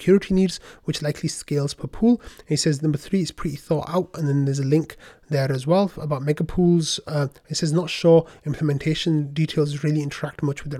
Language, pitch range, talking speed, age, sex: English, 145-160 Hz, 210 wpm, 30-49, male